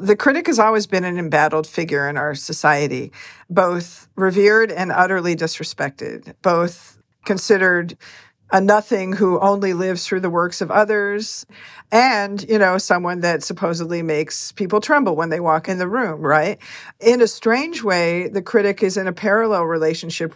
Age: 50-69